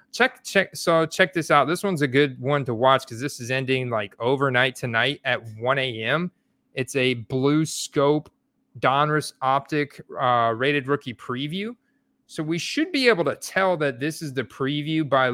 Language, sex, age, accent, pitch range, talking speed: English, male, 30-49, American, 125-155 Hz, 180 wpm